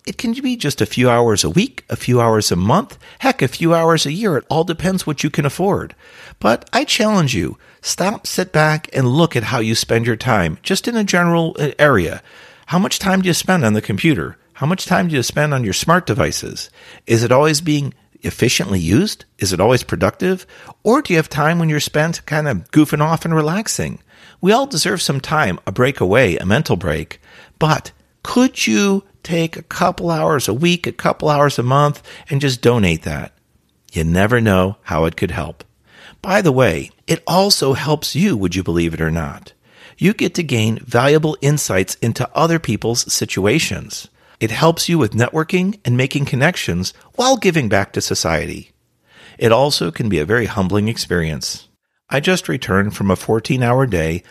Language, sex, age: English, male, 50-69